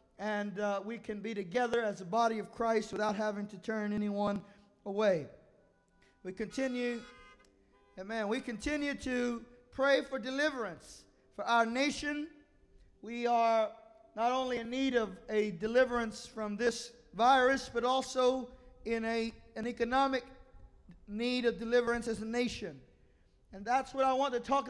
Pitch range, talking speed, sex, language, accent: 225-275 Hz, 145 wpm, male, English, American